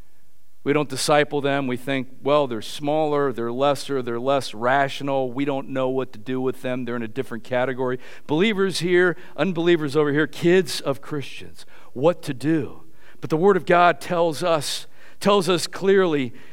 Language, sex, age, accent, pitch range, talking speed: English, male, 50-69, American, 140-225 Hz, 175 wpm